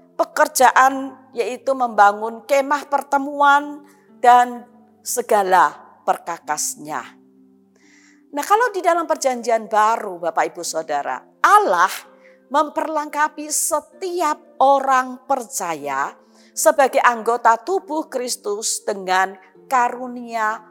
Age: 40-59